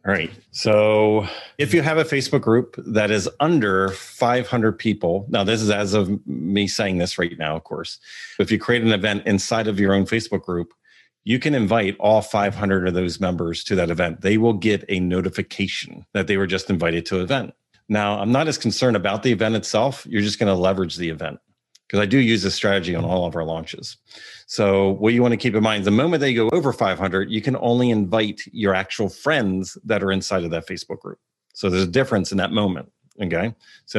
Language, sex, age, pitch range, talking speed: English, male, 40-59, 95-115 Hz, 220 wpm